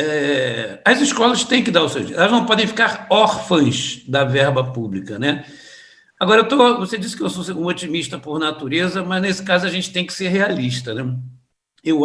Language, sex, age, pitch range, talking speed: Portuguese, male, 60-79, 145-200 Hz, 190 wpm